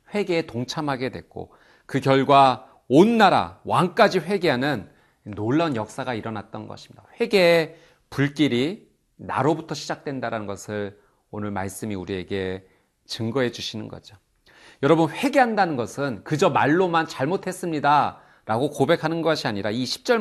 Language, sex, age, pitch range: Korean, male, 40-59, 115-170 Hz